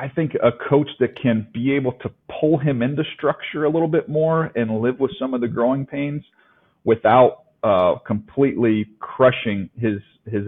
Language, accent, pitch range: English, American, 100-120 Hz